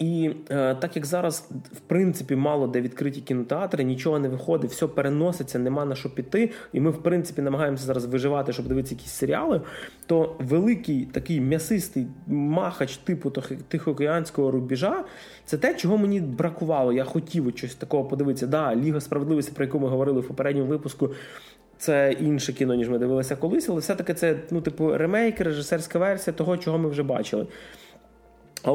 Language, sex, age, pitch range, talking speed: Russian, male, 20-39, 135-170 Hz, 170 wpm